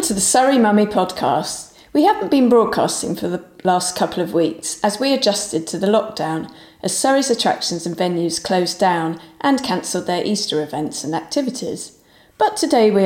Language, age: English, 40-59